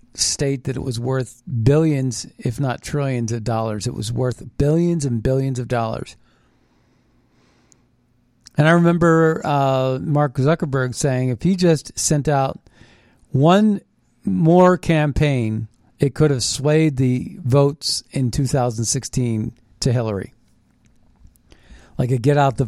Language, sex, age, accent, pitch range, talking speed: English, male, 40-59, American, 120-150 Hz, 130 wpm